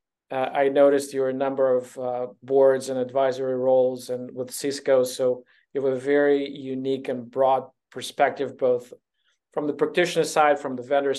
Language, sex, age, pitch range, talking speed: English, male, 40-59, 130-145 Hz, 170 wpm